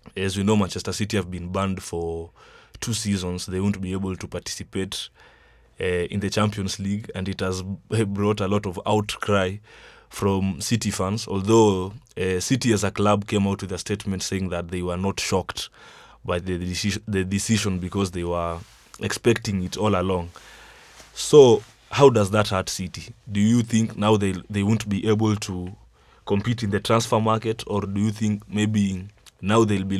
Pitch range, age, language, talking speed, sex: 95-110 Hz, 20-39, English, 180 wpm, male